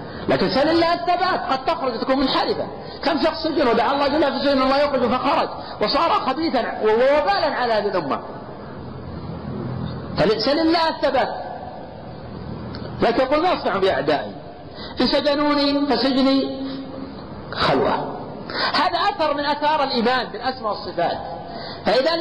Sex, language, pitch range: male, Arabic, 190-300 Hz